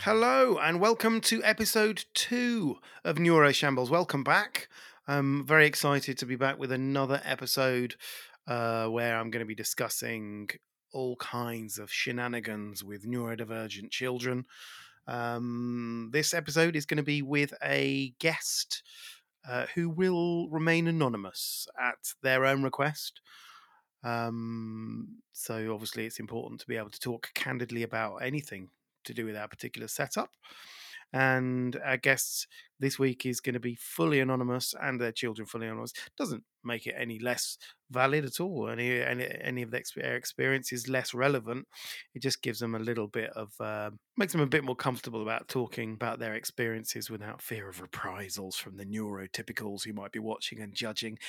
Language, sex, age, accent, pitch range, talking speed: English, male, 30-49, British, 115-140 Hz, 160 wpm